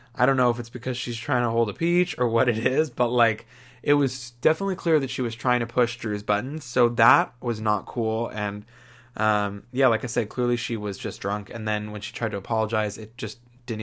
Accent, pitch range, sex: American, 105-125 Hz, male